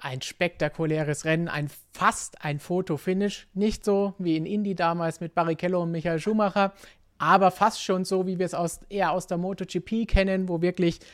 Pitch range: 140-180 Hz